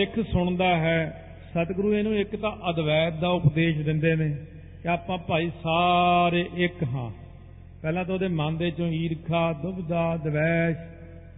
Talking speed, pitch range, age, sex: 140 wpm, 155-180 Hz, 50-69, male